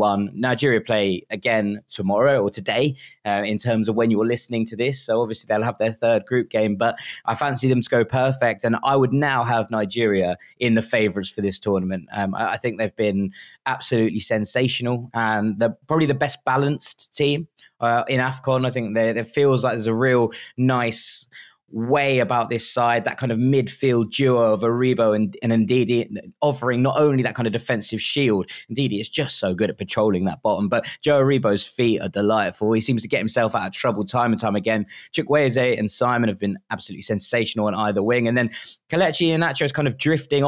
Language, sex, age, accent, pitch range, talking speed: English, male, 20-39, British, 110-130 Hz, 205 wpm